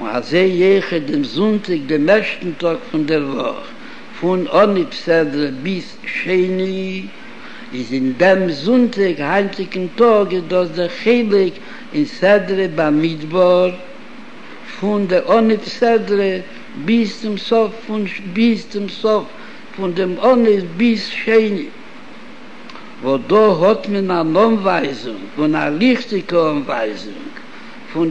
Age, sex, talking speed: 60-79, male, 110 wpm